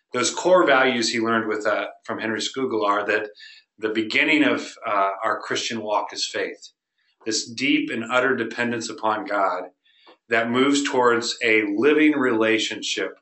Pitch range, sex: 105-130 Hz, male